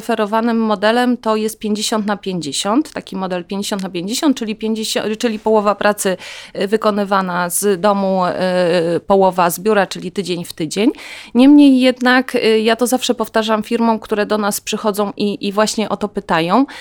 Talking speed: 150 wpm